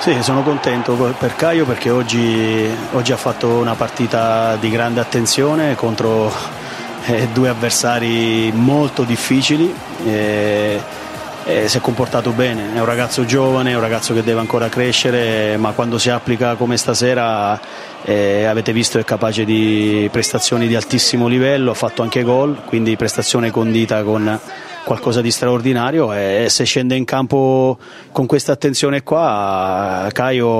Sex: male